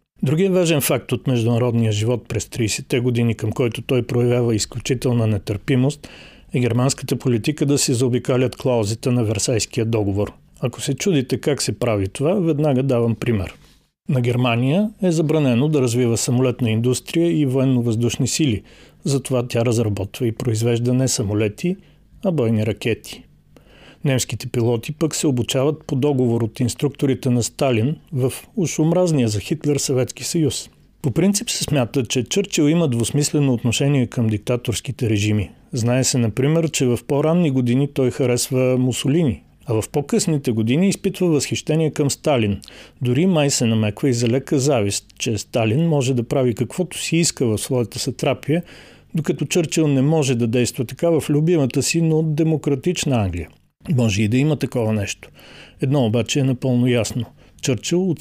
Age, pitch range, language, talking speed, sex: 40-59, 120-150 Hz, Bulgarian, 155 wpm, male